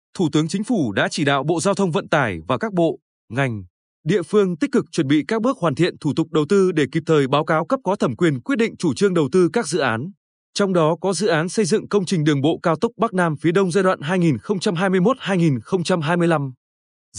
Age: 20-39